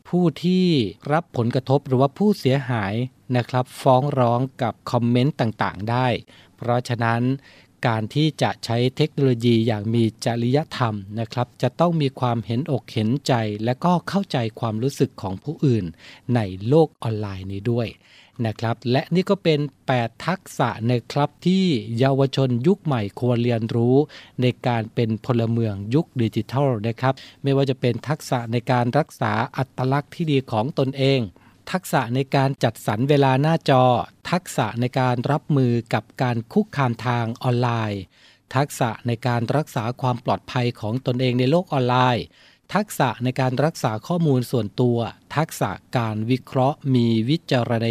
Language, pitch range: Thai, 115-140 Hz